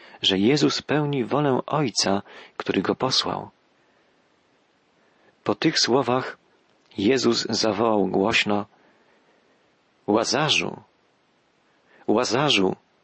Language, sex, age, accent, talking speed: Polish, male, 40-59, native, 75 wpm